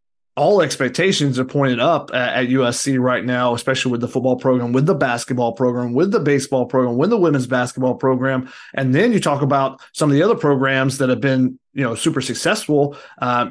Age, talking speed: 30-49, 200 wpm